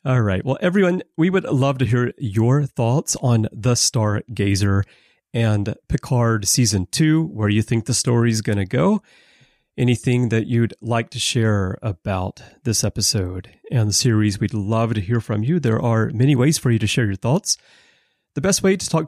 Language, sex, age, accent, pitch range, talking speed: English, male, 30-49, American, 105-135 Hz, 185 wpm